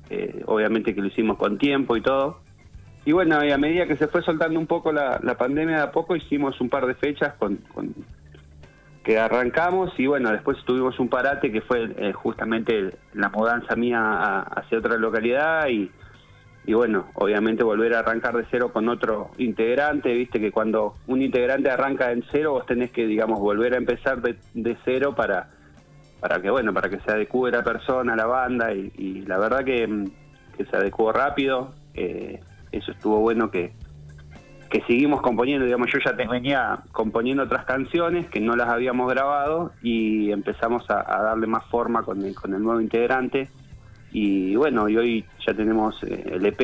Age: 30-49